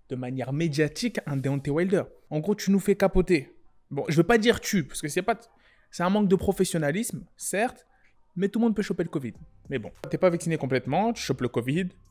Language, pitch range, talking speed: French, 145-200 Hz, 240 wpm